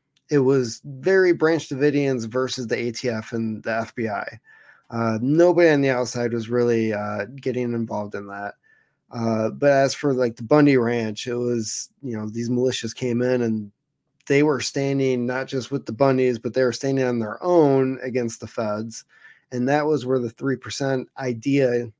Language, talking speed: English, 175 wpm